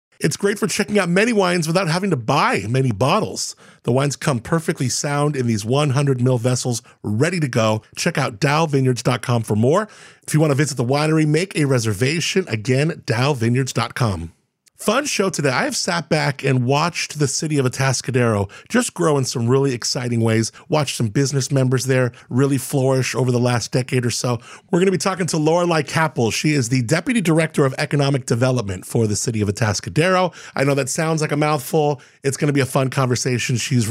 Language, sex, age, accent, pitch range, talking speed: English, male, 40-59, American, 125-165 Hz, 200 wpm